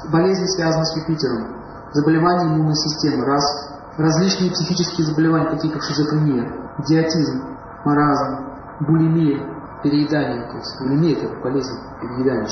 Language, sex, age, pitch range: Russian, male, 30-49, 150-175 Hz